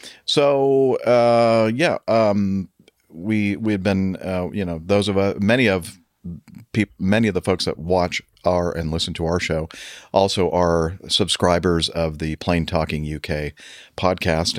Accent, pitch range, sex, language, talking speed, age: American, 85-100 Hz, male, English, 150 wpm, 50-69